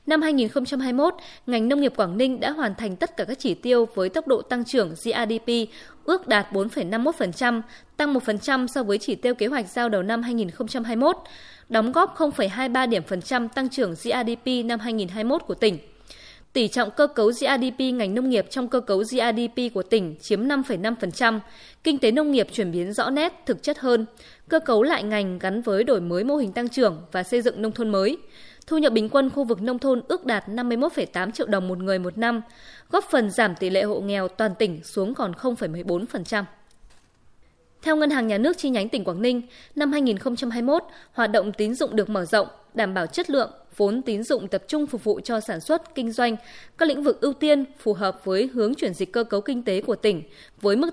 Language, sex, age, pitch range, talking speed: Vietnamese, female, 20-39, 210-270 Hz, 210 wpm